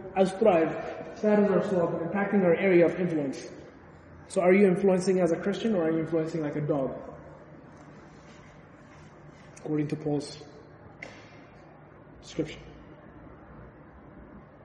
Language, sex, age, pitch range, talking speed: English, male, 20-39, 150-195 Hz, 110 wpm